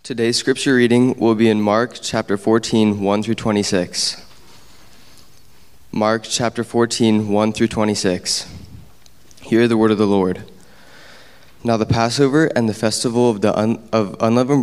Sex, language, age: male, English, 20-39